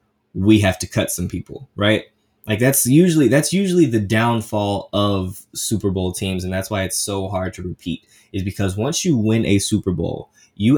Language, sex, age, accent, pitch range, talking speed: English, male, 20-39, American, 95-110 Hz, 195 wpm